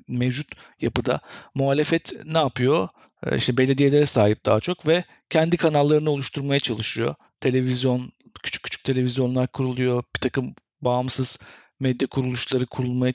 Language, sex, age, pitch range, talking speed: Turkish, male, 50-69, 130-155 Hz, 120 wpm